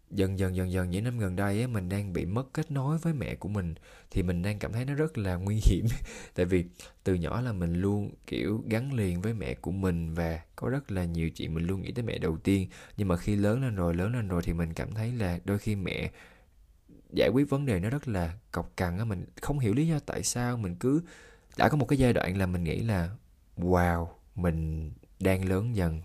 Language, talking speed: Vietnamese, 245 wpm